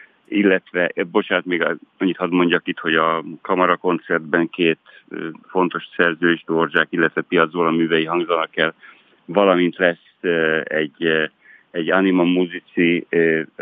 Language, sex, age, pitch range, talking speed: Hungarian, male, 60-79, 80-90 Hz, 110 wpm